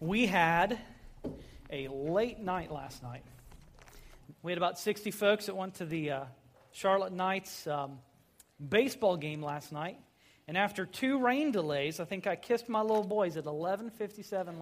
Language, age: English, 40-59